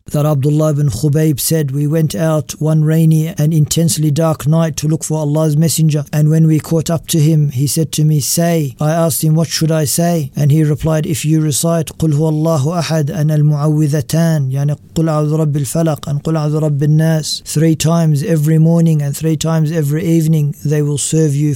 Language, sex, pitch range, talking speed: English, male, 150-160 Hz, 160 wpm